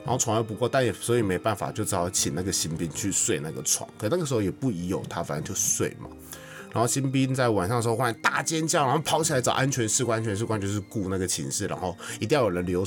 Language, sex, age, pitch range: Chinese, male, 20-39, 95-150 Hz